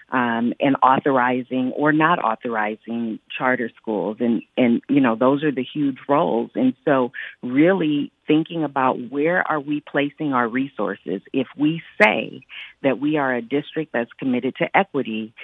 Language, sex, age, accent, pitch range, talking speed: English, female, 40-59, American, 120-155 Hz, 155 wpm